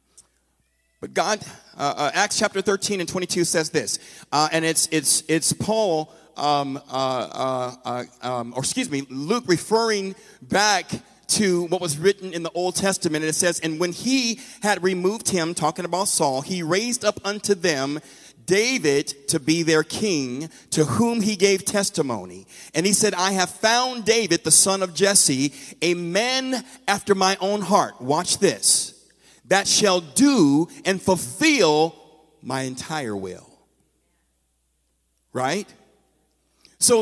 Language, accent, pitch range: English, American, 145-210 Hz